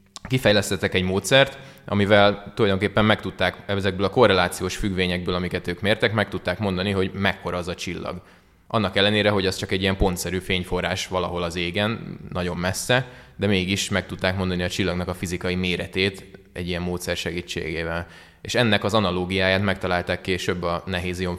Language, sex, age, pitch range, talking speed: Hungarian, male, 20-39, 90-100 Hz, 155 wpm